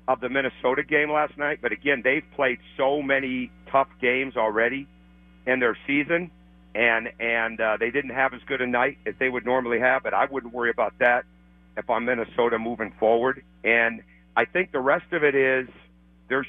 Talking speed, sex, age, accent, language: 195 wpm, male, 50-69, American, English